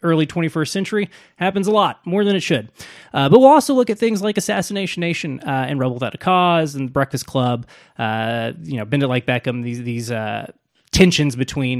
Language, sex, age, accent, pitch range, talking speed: English, male, 20-39, American, 115-155 Hz, 210 wpm